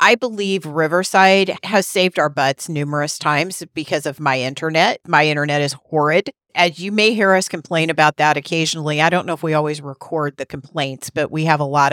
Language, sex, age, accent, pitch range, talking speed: English, female, 40-59, American, 145-185 Hz, 200 wpm